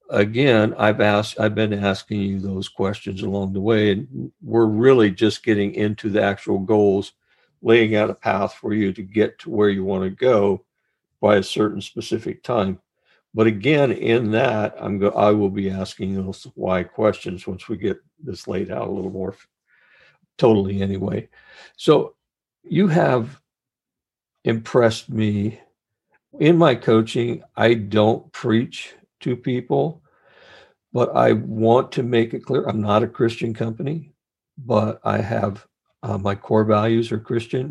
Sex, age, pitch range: male, 50-69, 100-115 Hz